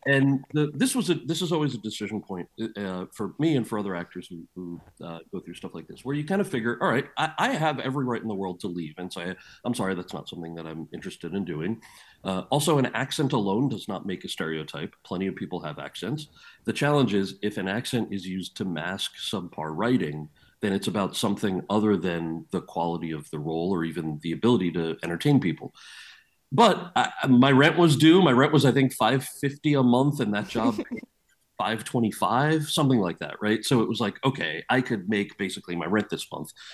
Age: 40-59